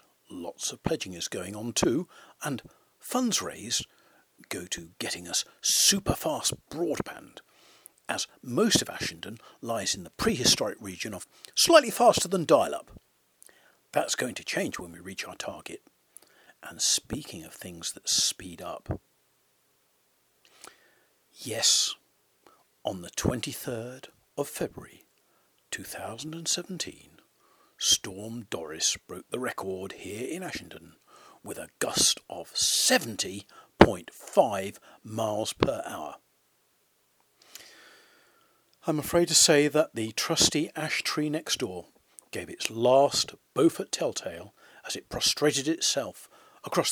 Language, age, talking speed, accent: English, 50-69, 115 wpm, British